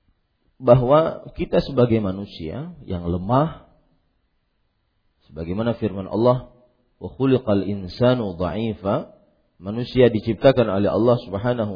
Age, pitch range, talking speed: 40-59, 95-125 Hz, 75 wpm